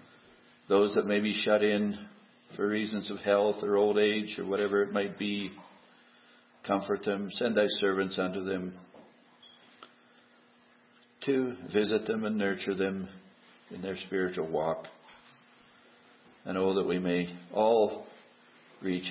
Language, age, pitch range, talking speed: English, 60-79, 95-125 Hz, 130 wpm